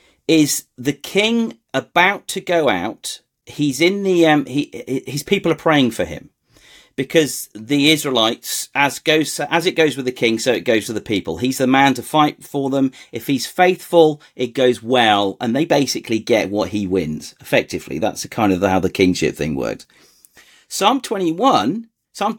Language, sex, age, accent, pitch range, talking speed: English, male, 40-59, British, 130-185 Hz, 175 wpm